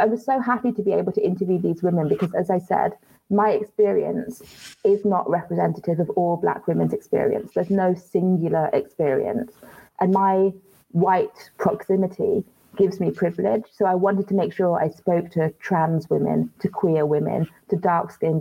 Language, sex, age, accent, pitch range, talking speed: English, female, 20-39, British, 165-200 Hz, 170 wpm